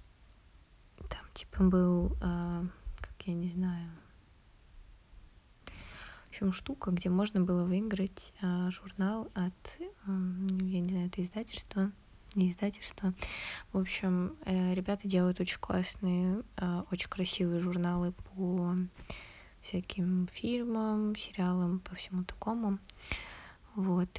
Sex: female